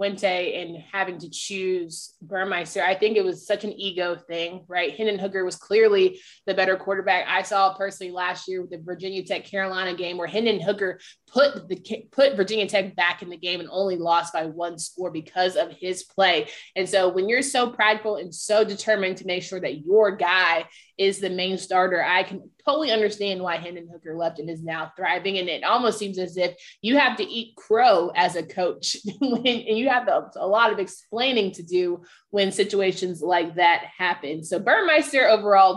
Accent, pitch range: American, 180-210 Hz